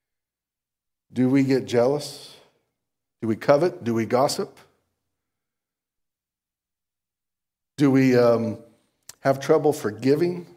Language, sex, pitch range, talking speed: English, male, 120-175 Hz, 90 wpm